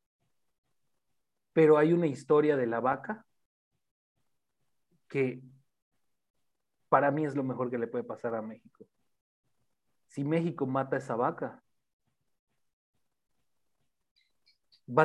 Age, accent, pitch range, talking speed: 40-59, Mexican, 125-150 Hz, 105 wpm